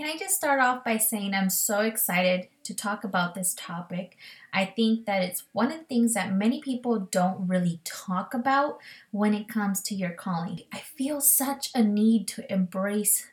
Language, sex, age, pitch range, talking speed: English, female, 20-39, 185-225 Hz, 195 wpm